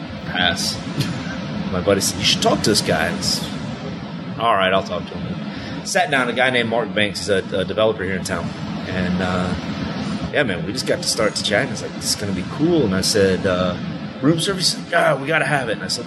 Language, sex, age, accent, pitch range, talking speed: English, male, 30-49, American, 95-110 Hz, 245 wpm